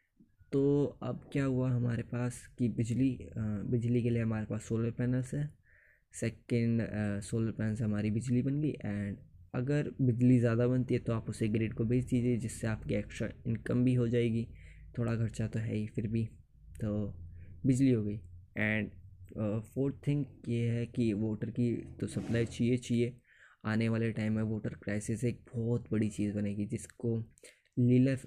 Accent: native